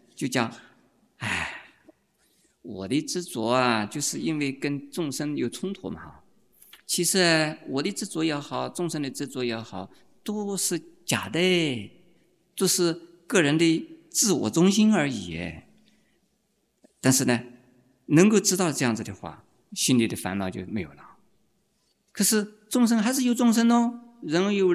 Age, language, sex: 50-69, Chinese, male